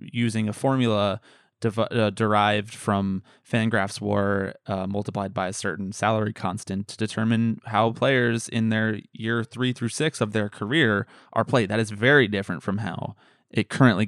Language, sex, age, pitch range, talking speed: English, male, 20-39, 105-125 Hz, 160 wpm